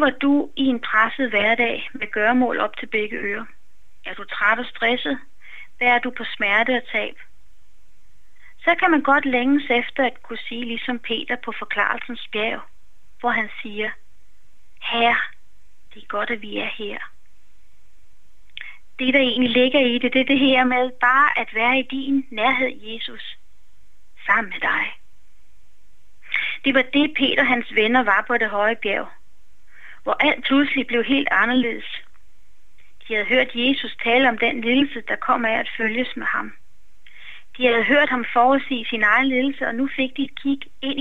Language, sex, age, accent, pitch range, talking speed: Danish, female, 30-49, native, 225-265 Hz, 170 wpm